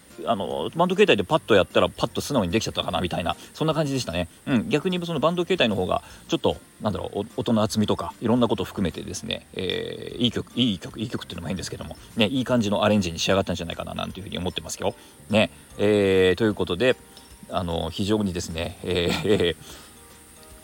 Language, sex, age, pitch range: Japanese, male, 40-59, 90-125 Hz